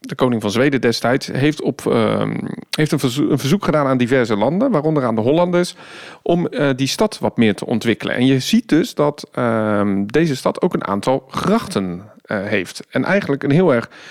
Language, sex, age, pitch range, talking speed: Dutch, male, 40-59, 120-165 Hz, 190 wpm